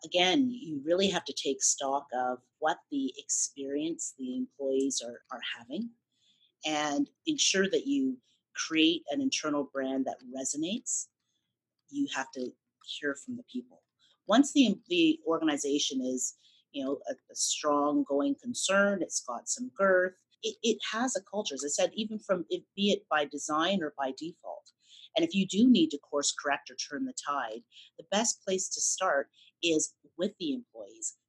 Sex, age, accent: female, 30-49, American